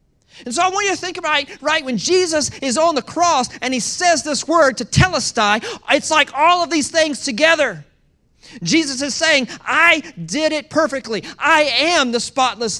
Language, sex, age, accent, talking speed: English, male, 40-59, American, 190 wpm